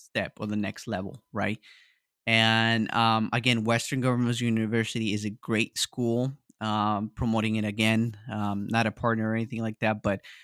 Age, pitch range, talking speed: 20-39, 110-125 Hz, 165 wpm